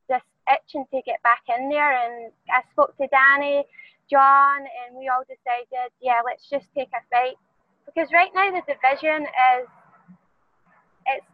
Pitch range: 235-280 Hz